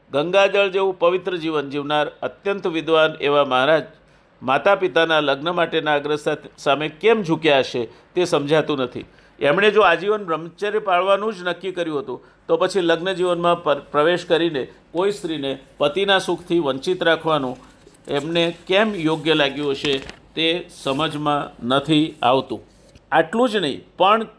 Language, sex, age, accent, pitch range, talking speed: Gujarati, male, 50-69, native, 150-185 Hz, 135 wpm